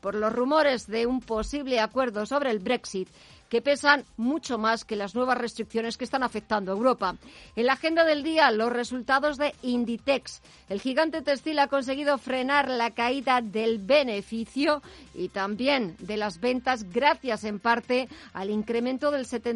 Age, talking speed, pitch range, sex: 40-59, 165 wpm, 230-275 Hz, female